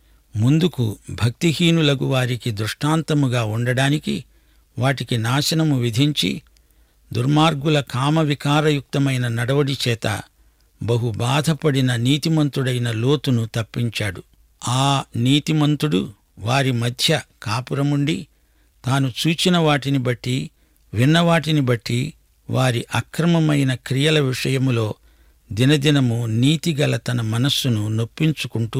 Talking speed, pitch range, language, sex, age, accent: 85 wpm, 115-145 Hz, English, male, 60-79, Indian